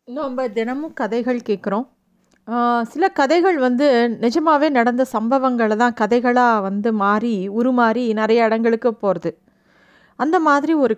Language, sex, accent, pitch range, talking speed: Tamil, female, native, 225-280 Hz, 120 wpm